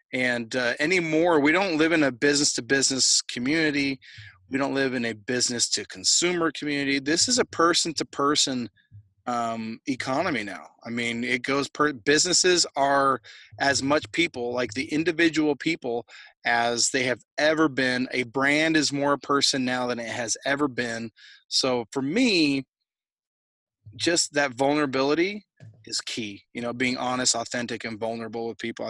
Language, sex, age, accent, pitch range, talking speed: English, male, 30-49, American, 125-170 Hz, 150 wpm